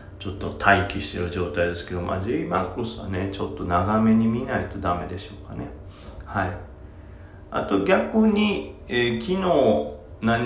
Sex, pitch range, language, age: male, 90-110 Hz, Japanese, 40-59